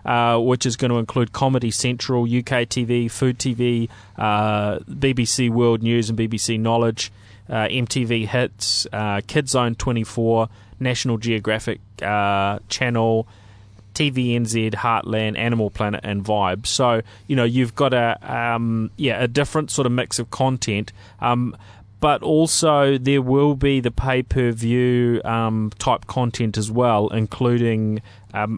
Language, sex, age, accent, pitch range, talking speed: English, male, 20-39, Australian, 105-120 Hz, 140 wpm